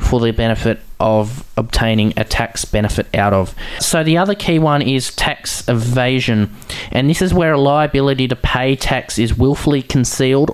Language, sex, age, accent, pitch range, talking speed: English, male, 20-39, Australian, 115-145 Hz, 165 wpm